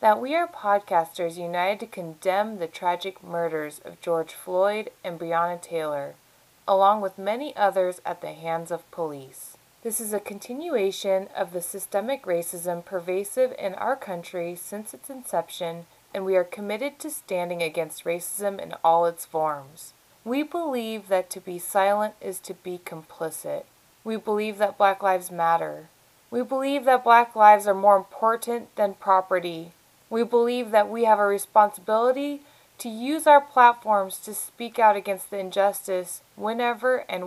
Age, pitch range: 20-39, 175-225 Hz